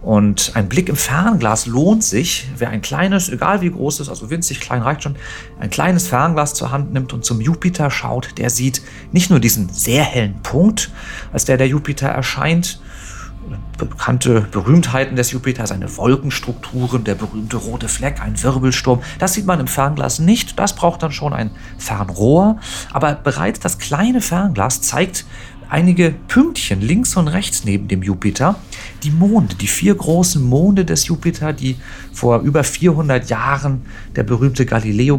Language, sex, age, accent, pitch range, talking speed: German, male, 40-59, German, 110-155 Hz, 165 wpm